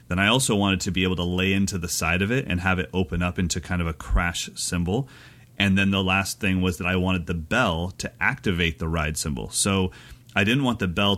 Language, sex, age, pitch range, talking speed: English, male, 30-49, 85-110 Hz, 250 wpm